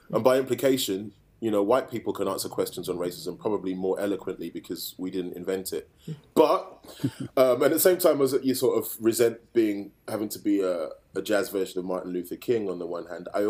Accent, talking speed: British, 215 wpm